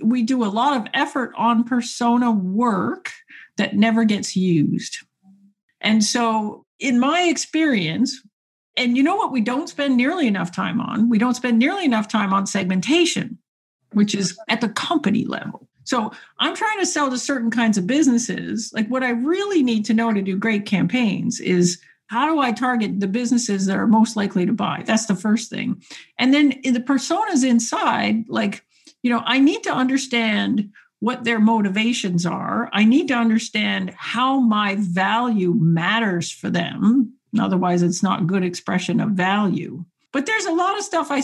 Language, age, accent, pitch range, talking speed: English, 50-69, American, 205-260 Hz, 180 wpm